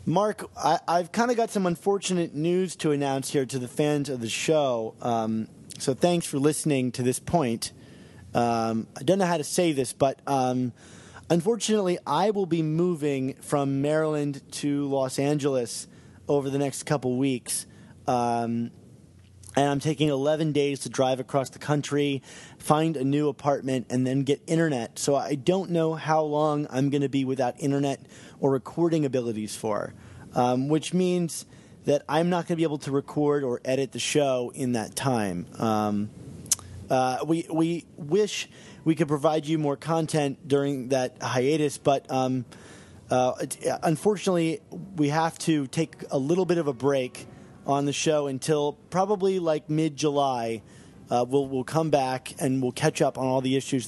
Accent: American